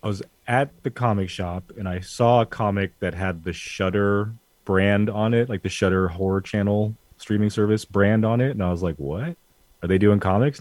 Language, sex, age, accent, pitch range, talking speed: English, male, 30-49, American, 95-120 Hz, 210 wpm